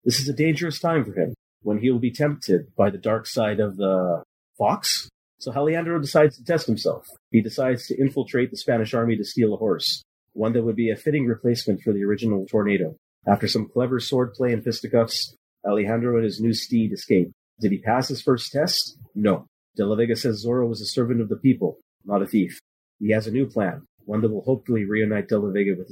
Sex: male